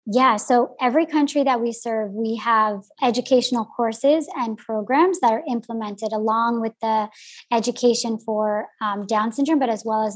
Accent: American